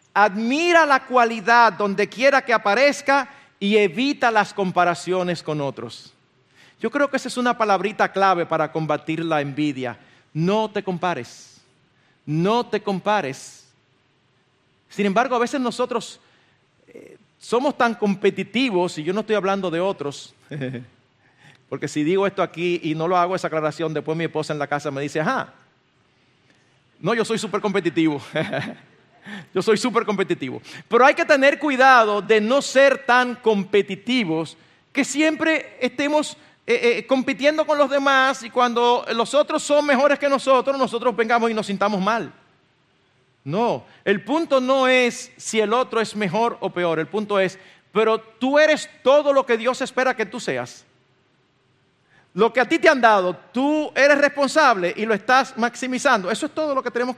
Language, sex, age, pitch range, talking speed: Spanish, male, 40-59, 160-255 Hz, 160 wpm